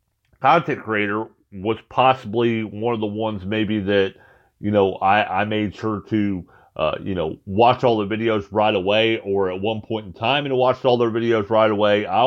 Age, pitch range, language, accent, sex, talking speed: 40-59, 95-120 Hz, English, American, male, 195 wpm